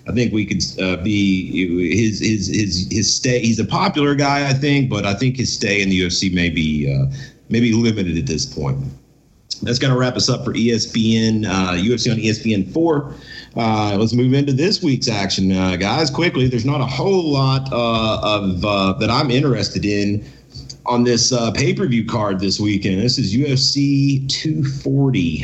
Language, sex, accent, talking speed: English, male, American, 185 wpm